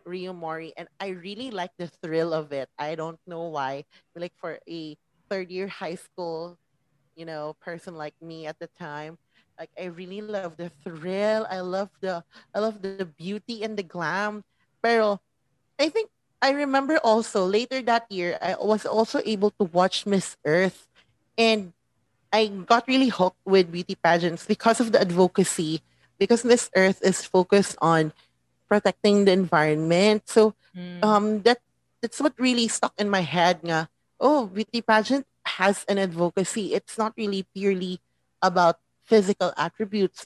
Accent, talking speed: Filipino, 160 wpm